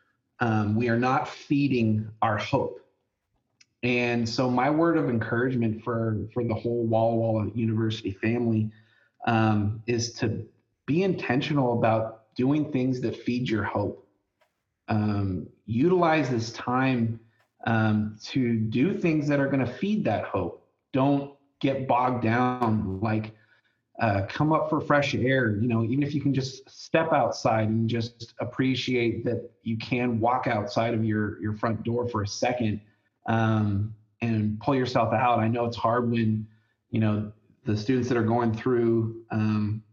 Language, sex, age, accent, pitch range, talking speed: English, male, 30-49, American, 110-125 Hz, 155 wpm